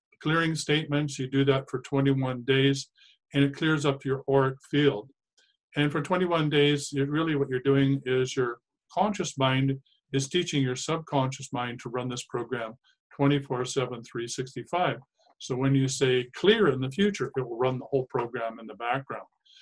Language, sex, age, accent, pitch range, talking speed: English, male, 50-69, American, 130-160 Hz, 175 wpm